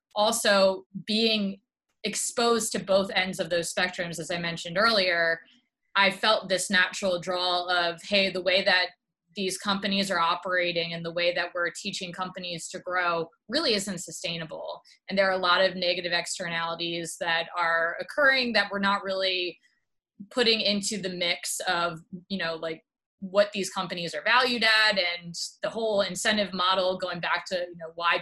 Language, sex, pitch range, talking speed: English, female, 175-205 Hz, 170 wpm